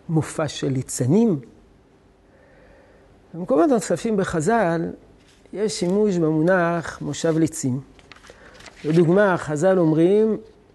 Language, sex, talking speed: Hebrew, male, 80 wpm